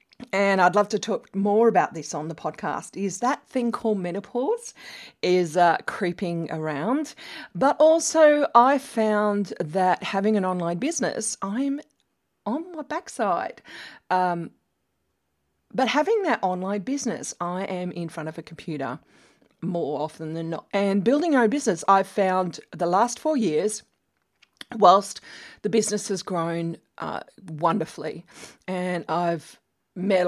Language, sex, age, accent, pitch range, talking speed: English, female, 40-59, Australian, 170-225 Hz, 140 wpm